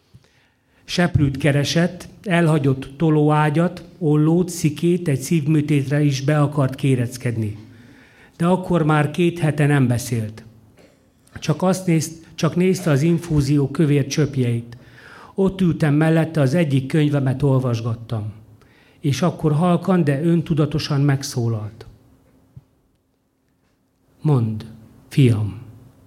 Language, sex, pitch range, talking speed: Hungarian, male, 130-155 Hz, 100 wpm